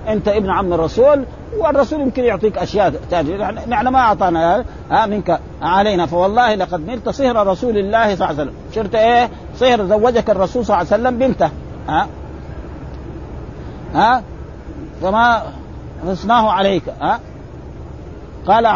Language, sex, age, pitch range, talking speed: Arabic, male, 50-69, 170-235 Hz, 135 wpm